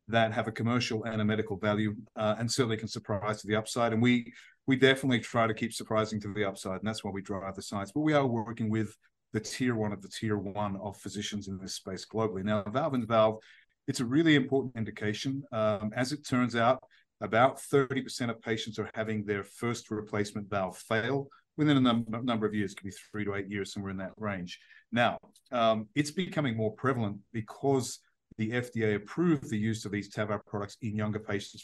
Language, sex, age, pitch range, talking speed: English, male, 40-59, 105-120 Hz, 210 wpm